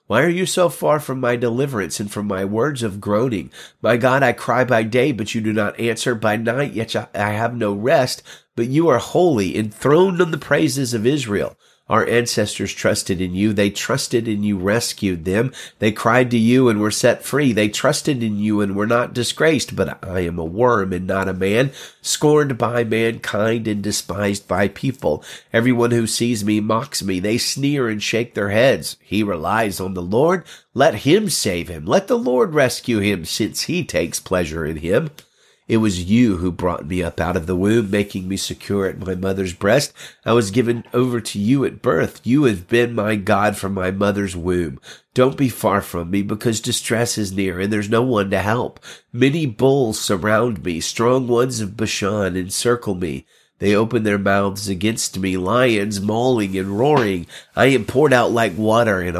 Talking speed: 195 wpm